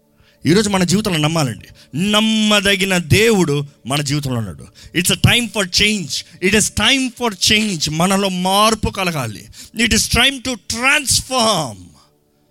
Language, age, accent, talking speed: Telugu, 30-49, native, 130 wpm